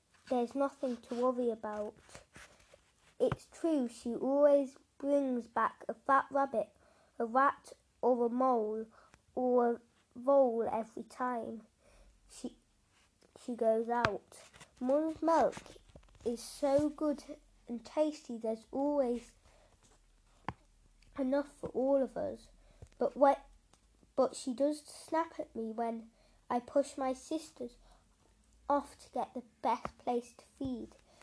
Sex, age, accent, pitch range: female, 10-29, British, 230-280 Hz